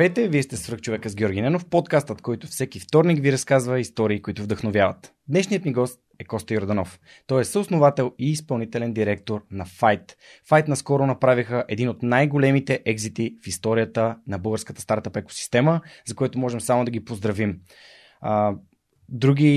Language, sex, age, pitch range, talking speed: Bulgarian, male, 20-39, 110-140 Hz, 155 wpm